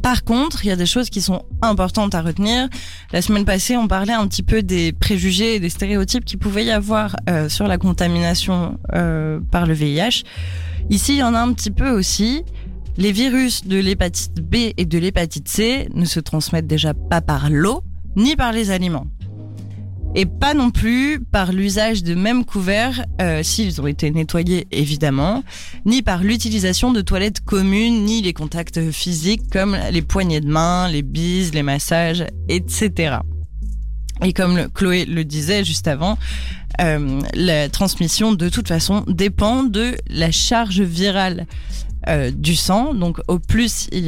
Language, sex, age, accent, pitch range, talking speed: French, female, 20-39, French, 150-210 Hz, 175 wpm